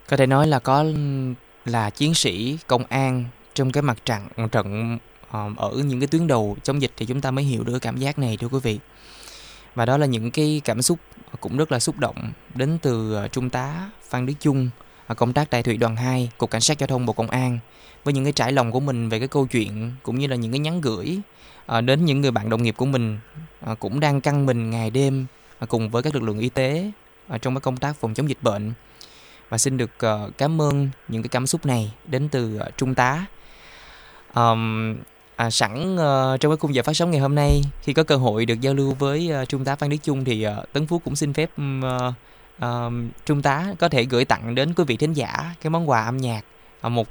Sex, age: male, 20-39